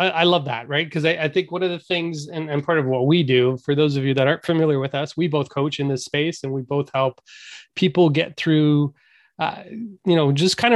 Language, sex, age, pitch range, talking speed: English, male, 20-39, 140-165 Hz, 255 wpm